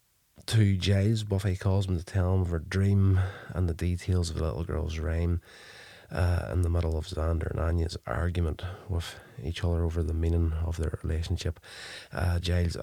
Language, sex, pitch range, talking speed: English, male, 85-95 Hz, 185 wpm